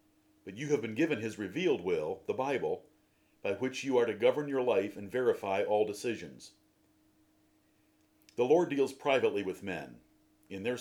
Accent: American